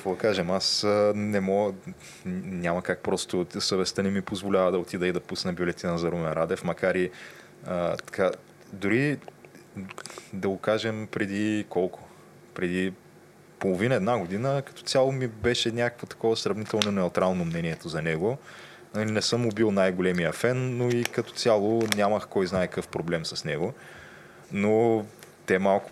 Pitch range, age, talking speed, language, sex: 85-105 Hz, 20-39, 145 wpm, Bulgarian, male